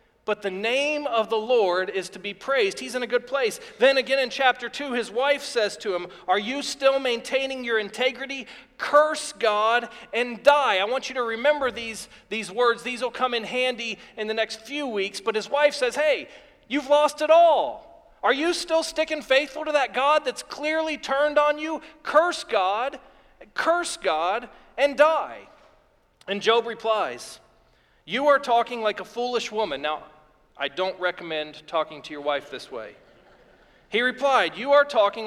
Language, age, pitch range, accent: English, 40-59, 215-285 Hz, American